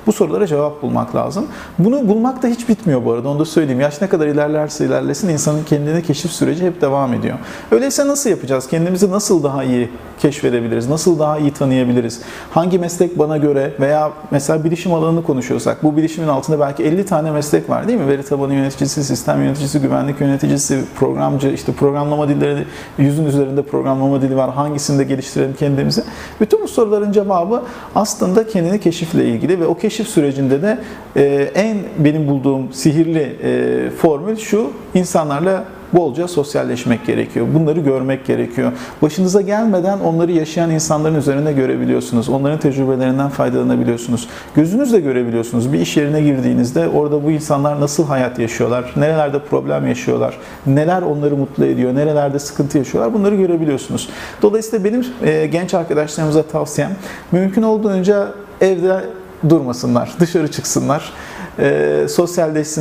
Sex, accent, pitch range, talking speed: male, native, 135-175 Hz, 140 wpm